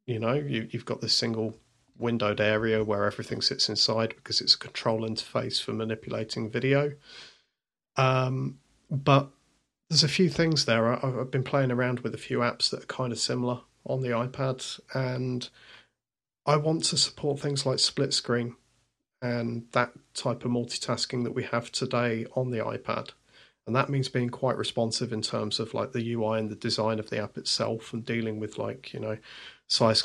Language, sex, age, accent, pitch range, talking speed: English, male, 30-49, British, 110-130 Hz, 180 wpm